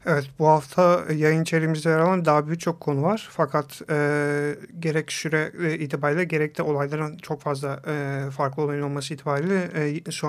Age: 40-59